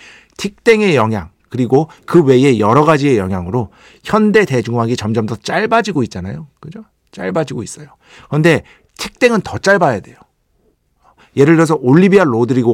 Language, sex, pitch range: Korean, male, 115-185 Hz